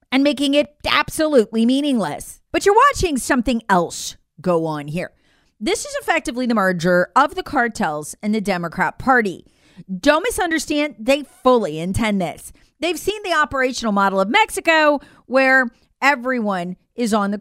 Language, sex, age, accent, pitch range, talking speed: English, female, 30-49, American, 200-295 Hz, 150 wpm